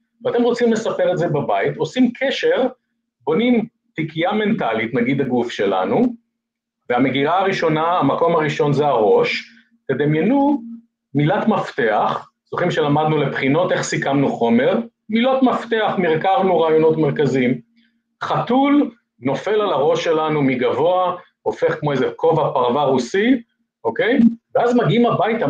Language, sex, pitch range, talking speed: Hebrew, male, 160-245 Hz, 120 wpm